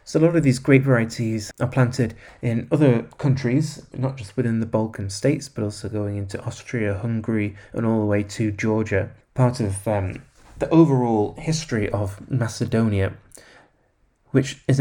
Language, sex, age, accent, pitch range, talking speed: English, male, 30-49, British, 105-125 Hz, 160 wpm